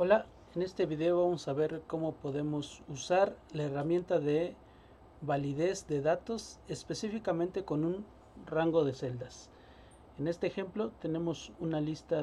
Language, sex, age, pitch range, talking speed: Spanish, male, 40-59, 145-180 Hz, 135 wpm